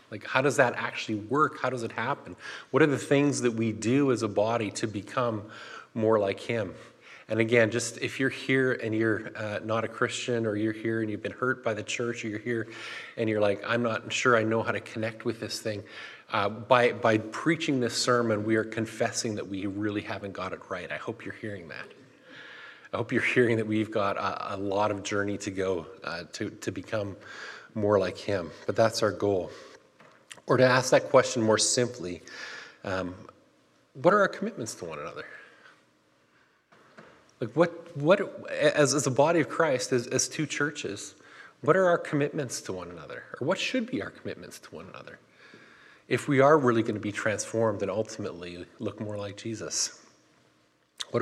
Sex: male